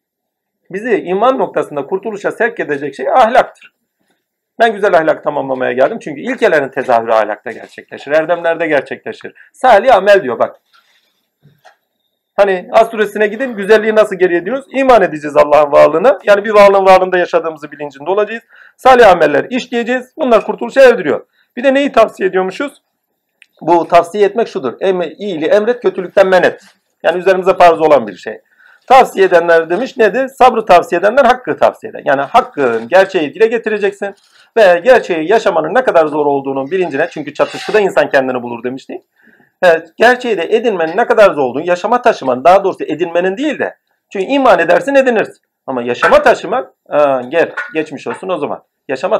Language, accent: Turkish, native